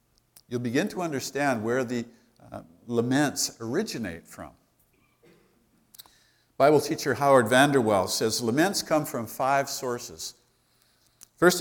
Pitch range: 120-155 Hz